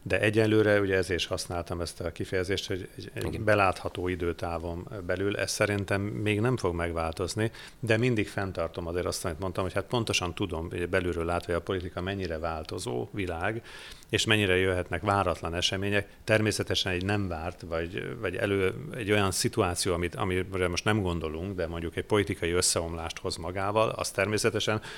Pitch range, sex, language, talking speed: 85-105 Hz, male, Hungarian, 160 wpm